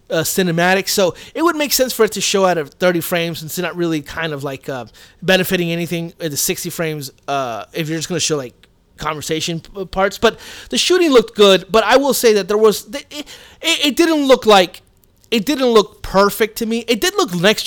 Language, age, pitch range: English, 30-49, 160-215 Hz